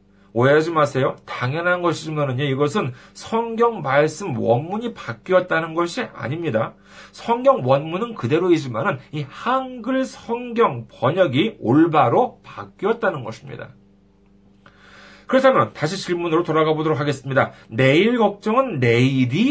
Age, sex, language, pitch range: 40-59, male, Korean, 120-195 Hz